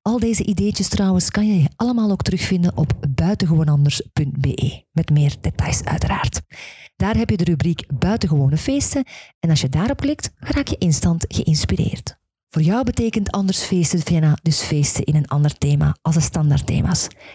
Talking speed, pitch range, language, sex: 160 wpm, 145-200 Hz, Dutch, female